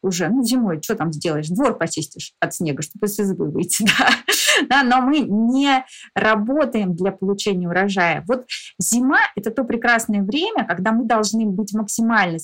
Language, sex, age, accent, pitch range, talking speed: Russian, female, 20-39, native, 180-255 Hz, 155 wpm